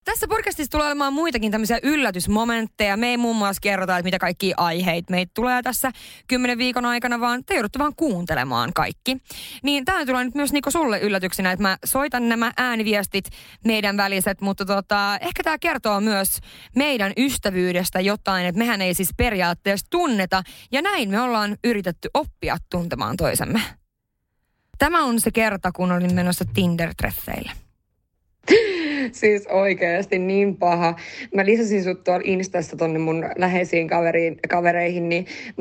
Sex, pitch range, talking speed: female, 180-240 Hz, 150 wpm